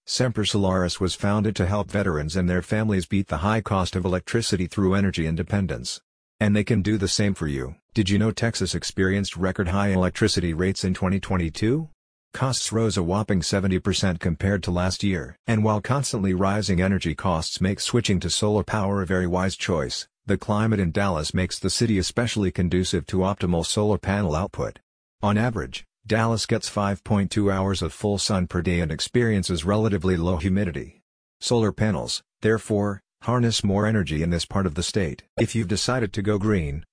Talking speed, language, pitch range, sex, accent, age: 180 wpm, English, 90-105 Hz, male, American, 50-69